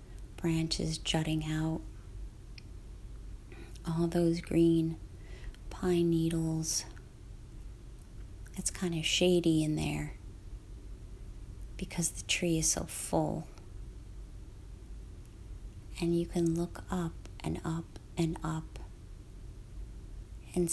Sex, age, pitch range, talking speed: female, 30-49, 100-165 Hz, 85 wpm